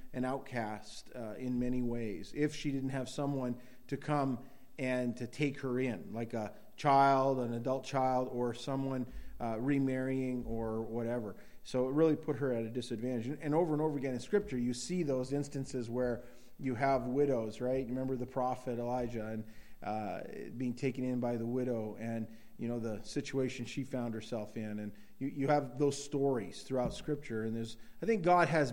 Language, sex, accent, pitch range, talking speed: English, male, American, 120-135 Hz, 185 wpm